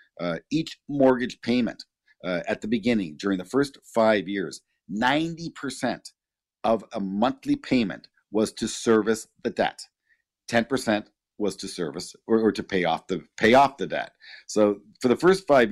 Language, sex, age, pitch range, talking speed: English, male, 50-69, 95-130 Hz, 170 wpm